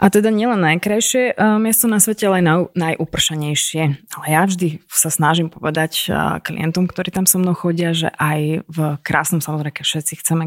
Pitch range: 155-175 Hz